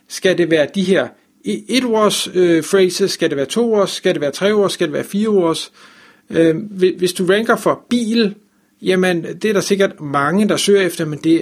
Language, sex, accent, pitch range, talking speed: Danish, male, native, 155-195 Hz, 190 wpm